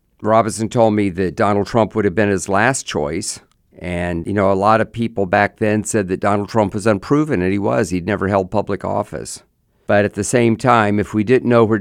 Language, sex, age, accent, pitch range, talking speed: English, male, 50-69, American, 95-115 Hz, 230 wpm